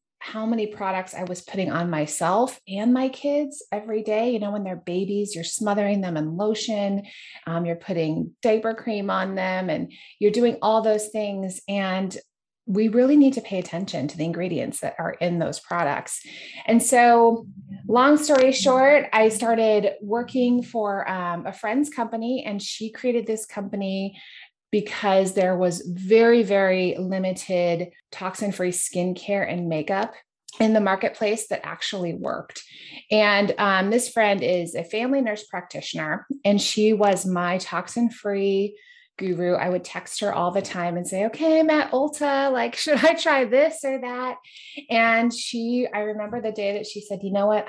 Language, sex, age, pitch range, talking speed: English, female, 30-49, 185-235 Hz, 165 wpm